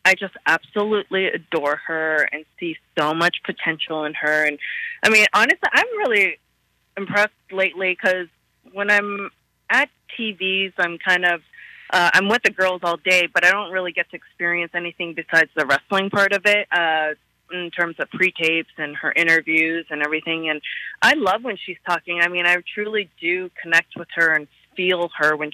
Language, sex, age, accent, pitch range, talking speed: English, female, 20-39, American, 155-190 Hz, 180 wpm